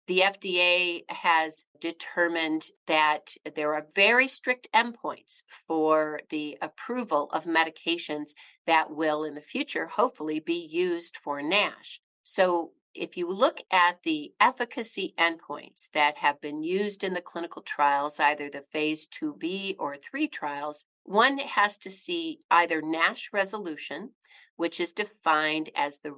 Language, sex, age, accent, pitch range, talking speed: English, female, 50-69, American, 155-200 Hz, 140 wpm